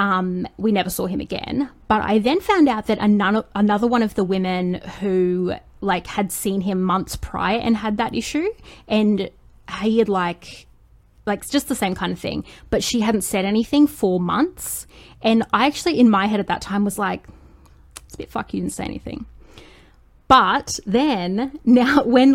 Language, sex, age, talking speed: English, female, 20-39, 190 wpm